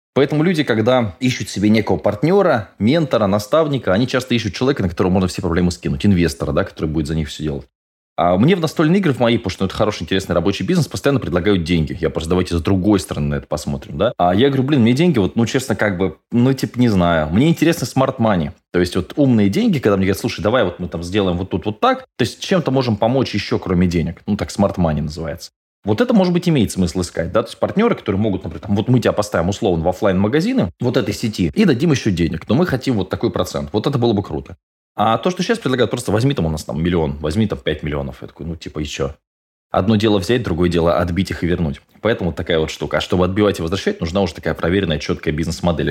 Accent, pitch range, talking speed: native, 85-115 Hz, 245 wpm